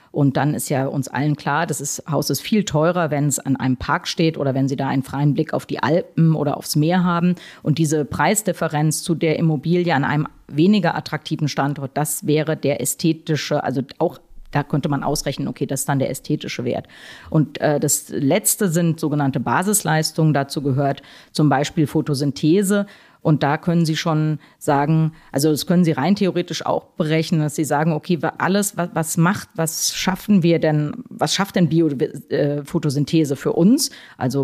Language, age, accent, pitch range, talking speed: German, 40-59, German, 145-170 Hz, 185 wpm